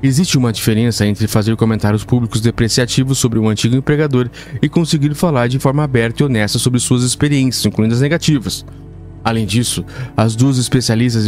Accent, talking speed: Brazilian, 165 wpm